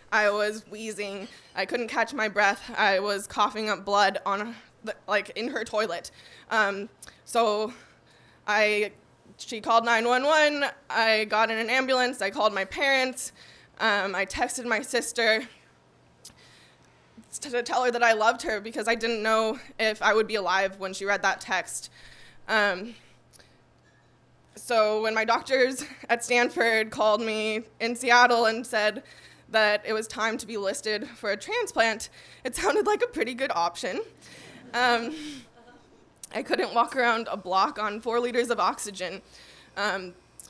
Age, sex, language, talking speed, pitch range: 20-39, female, English, 155 wpm, 205-235 Hz